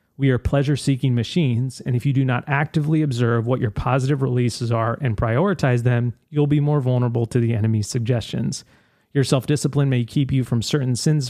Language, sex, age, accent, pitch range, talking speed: English, male, 30-49, American, 120-140 Hz, 185 wpm